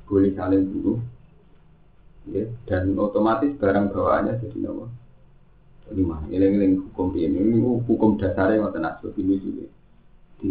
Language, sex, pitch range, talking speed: Indonesian, male, 100-130 Hz, 145 wpm